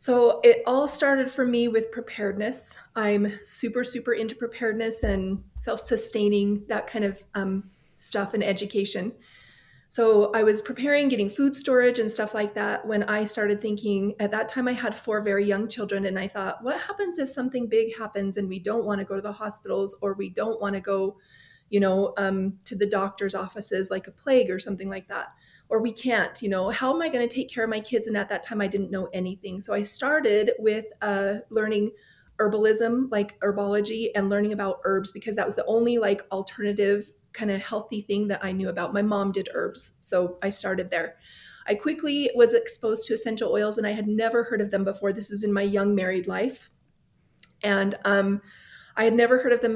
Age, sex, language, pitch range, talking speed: 30-49, female, English, 200-230 Hz, 210 wpm